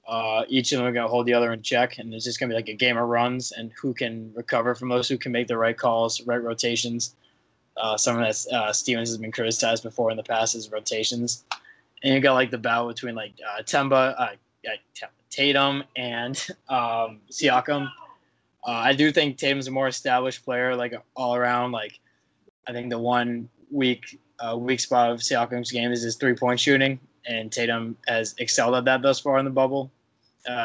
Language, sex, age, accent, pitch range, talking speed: English, male, 20-39, American, 115-130 Hz, 210 wpm